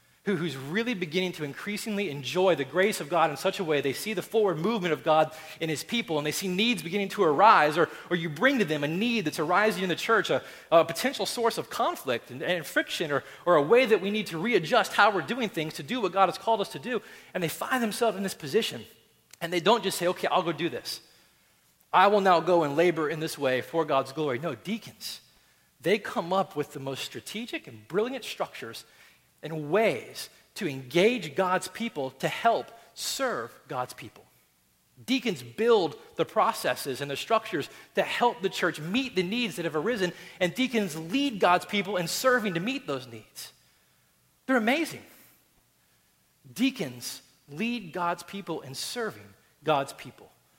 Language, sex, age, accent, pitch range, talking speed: English, male, 30-49, American, 150-215 Hz, 195 wpm